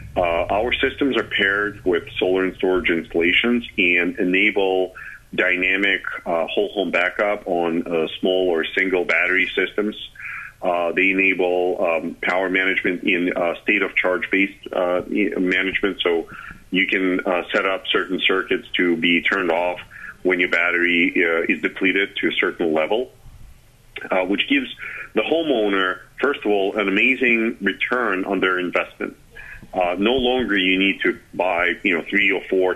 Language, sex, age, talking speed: English, male, 40-59, 150 wpm